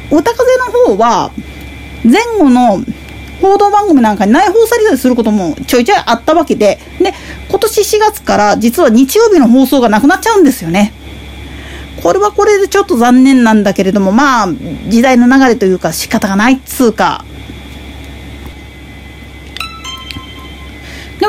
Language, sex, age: Japanese, female, 40-59